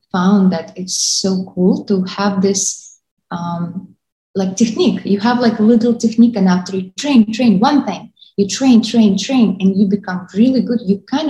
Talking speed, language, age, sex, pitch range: 185 wpm, English, 20-39, female, 180-220 Hz